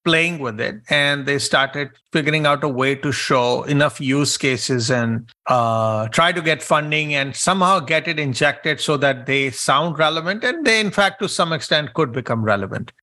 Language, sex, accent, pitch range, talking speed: English, male, Indian, 140-185 Hz, 190 wpm